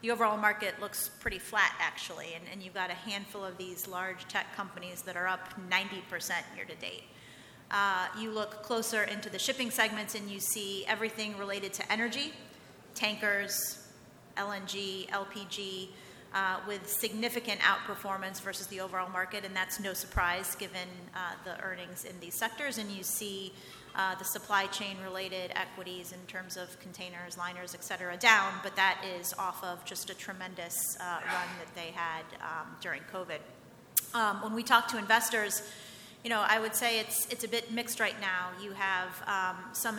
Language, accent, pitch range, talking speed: English, American, 185-210 Hz, 175 wpm